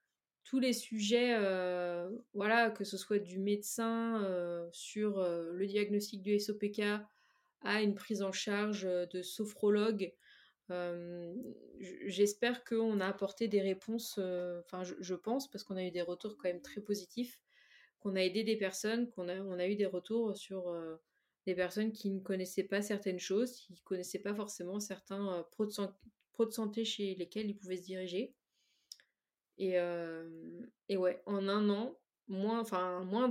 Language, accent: French, French